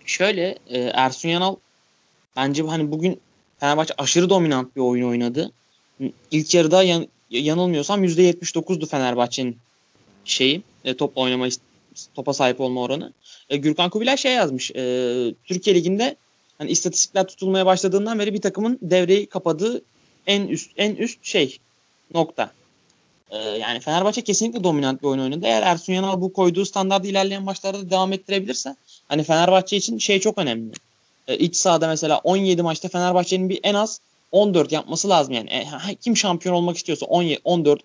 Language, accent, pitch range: Turkish, native, 145-195 Hz